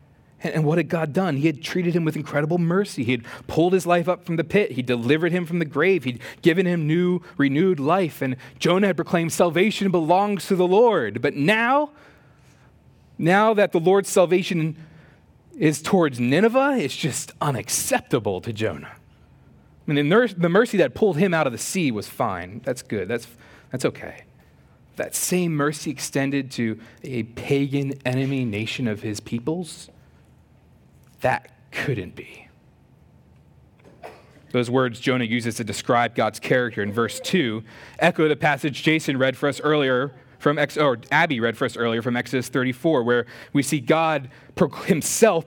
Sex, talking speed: male, 165 wpm